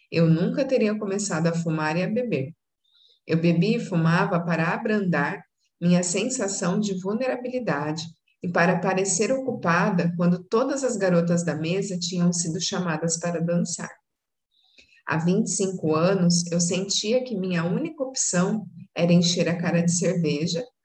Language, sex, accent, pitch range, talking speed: Portuguese, female, Brazilian, 165-200 Hz, 140 wpm